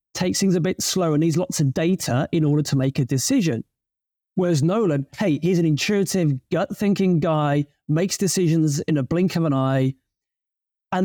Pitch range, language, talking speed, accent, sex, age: 145-180 Hz, English, 180 wpm, British, male, 30-49